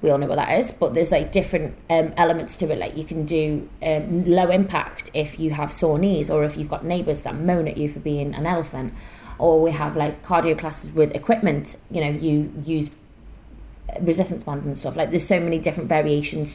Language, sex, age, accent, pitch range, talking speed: English, female, 20-39, British, 150-185 Hz, 220 wpm